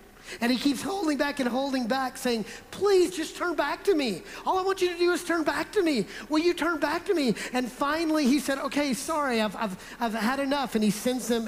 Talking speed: 245 wpm